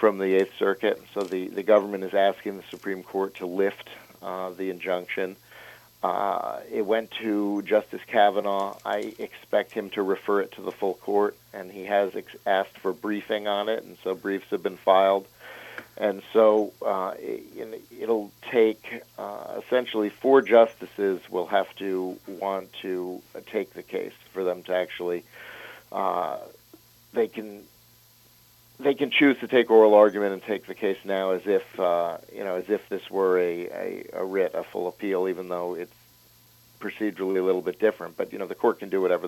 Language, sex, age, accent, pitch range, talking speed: English, male, 50-69, American, 95-105 Hz, 180 wpm